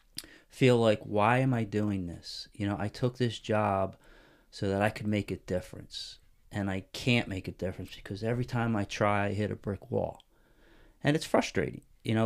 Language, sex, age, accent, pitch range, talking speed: English, male, 30-49, American, 105-125 Hz, 200 wpm